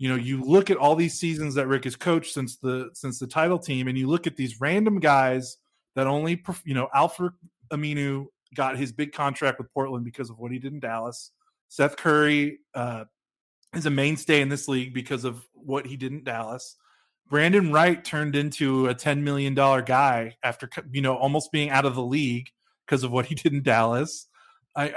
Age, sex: 30-49, male